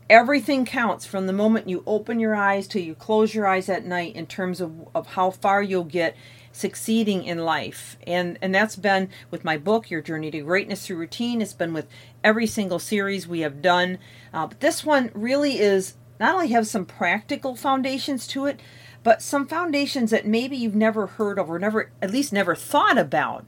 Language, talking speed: English, 200 wpm